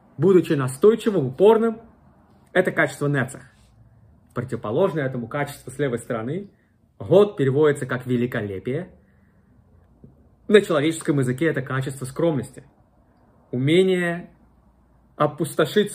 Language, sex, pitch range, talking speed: Russian, male, 130-165 Hz, 90 wpm